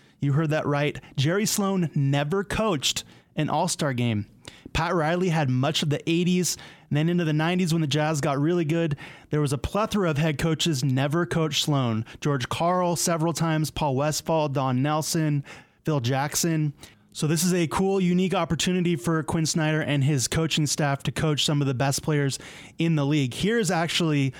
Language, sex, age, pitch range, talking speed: English, male, 20-39, 110-155 Hz, 185 wpm